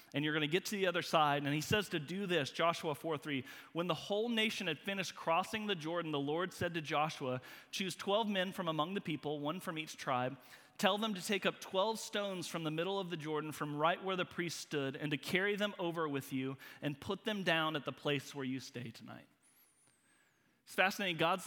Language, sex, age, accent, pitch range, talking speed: English, male, 30-49, American, 145-195 Hz, 230 wpm